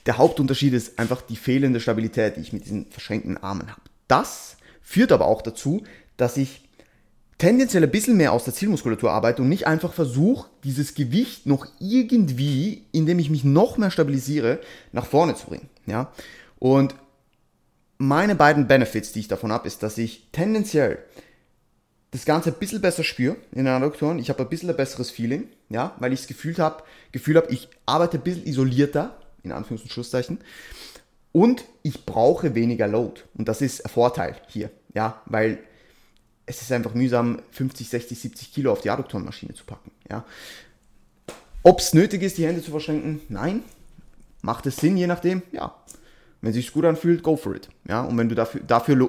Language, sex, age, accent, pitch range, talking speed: German, male, 20-39, German, 115-160 Hz, 180 wpm